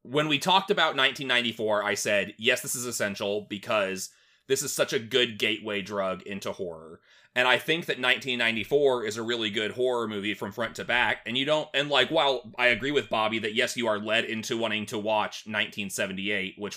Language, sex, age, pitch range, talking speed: English, male, 30-49, 100-125 Hz, 205 wpm